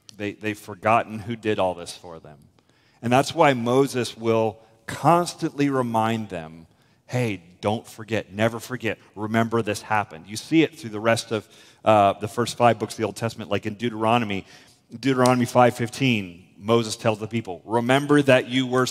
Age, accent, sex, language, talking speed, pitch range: 40-59, American, male, English, 170 wpm, 110-145 Hz